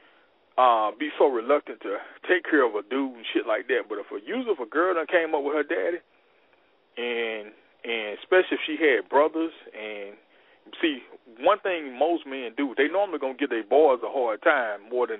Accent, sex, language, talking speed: American, male, English, 205 wpm